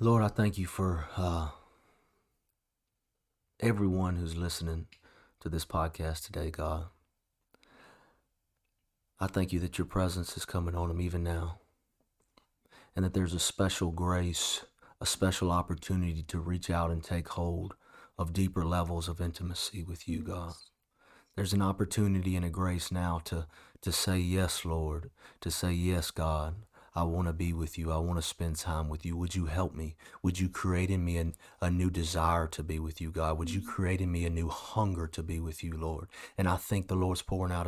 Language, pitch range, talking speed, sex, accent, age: English, 80-90 Hz, 185 wpm, male, American, 30-49